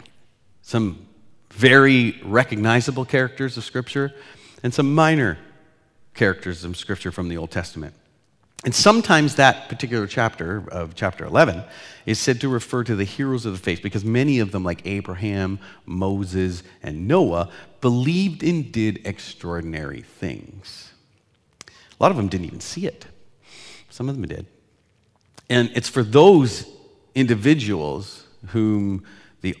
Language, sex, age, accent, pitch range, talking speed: English, male, 40-59, American, 95-125 Hz, 135 wpm